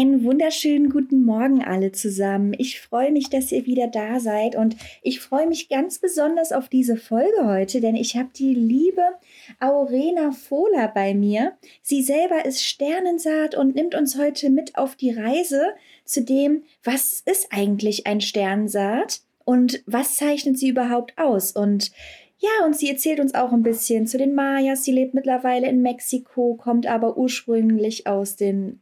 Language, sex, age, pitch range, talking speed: German, female, 30-49, 215-285 Hz, 165 wpm